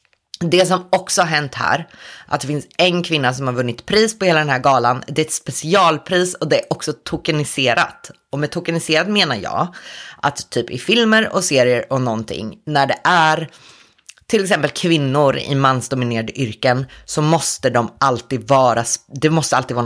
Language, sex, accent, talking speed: Swedish, female, native, 180 wpm